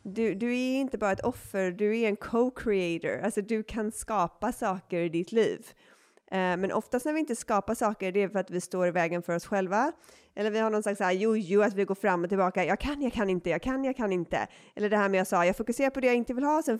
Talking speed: 270 wpm